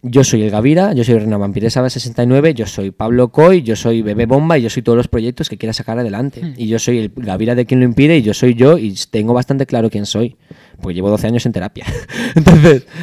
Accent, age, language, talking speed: Spanish, 20-39, Spanish, 235 wpm